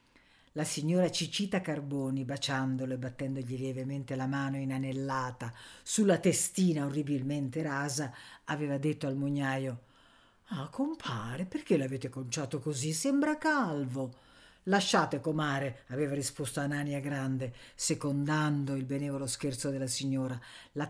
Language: Italian